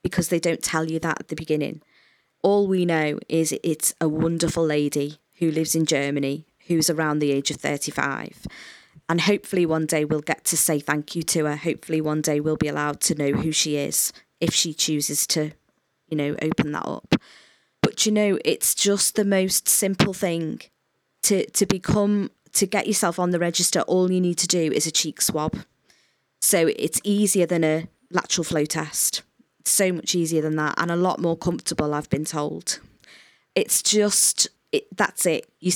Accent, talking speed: British, 190 wpm